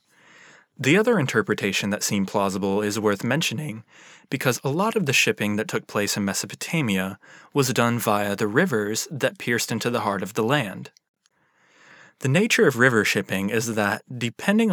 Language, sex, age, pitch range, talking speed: English, male, 20-39, 105-145 Hz, 165 wpm